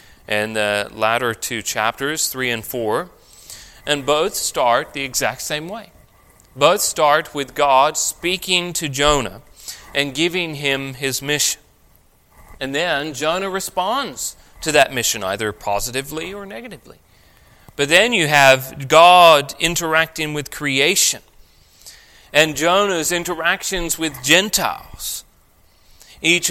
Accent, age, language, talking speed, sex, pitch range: American, 40-59, English, 120 wpm, male, 115-155 Hz